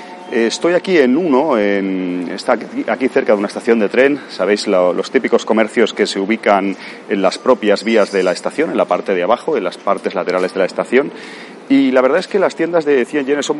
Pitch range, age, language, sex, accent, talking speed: 95-125 Hz, 30-49, Spanish, male, Spanish, 225 wpm